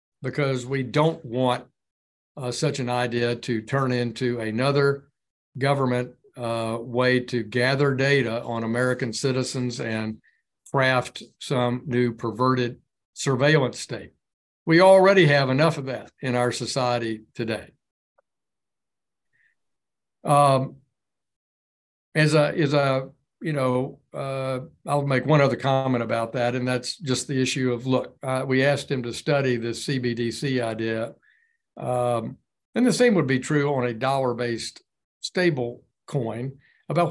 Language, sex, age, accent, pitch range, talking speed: English, male, 60-79, American, 120-145 Hz, 135 wpm